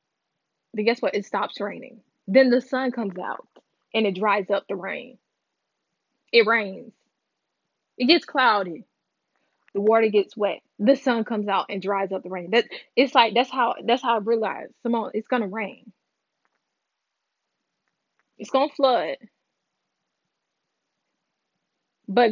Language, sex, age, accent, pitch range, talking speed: English, female, 10-29, American, 205-245 Hz, 140 wpm